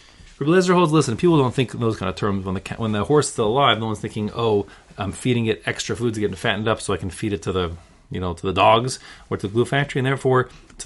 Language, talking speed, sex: English, 285 wpm, male